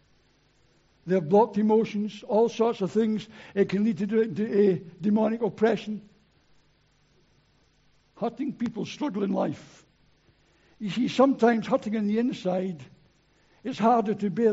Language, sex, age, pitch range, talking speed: English, male, 60-79, 175-215 Hz, 125 wpm